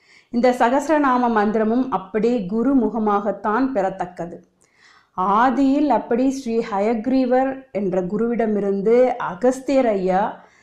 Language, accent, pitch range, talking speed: Tamil, native, 205-280 Hz, 85 wpm